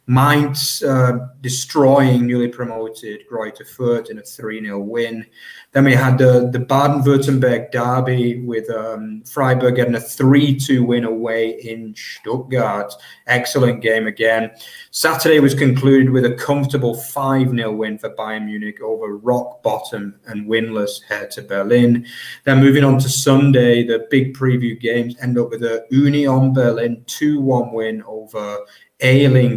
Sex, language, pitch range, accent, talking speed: male, English, 110-130 Hz, British, 140 wpm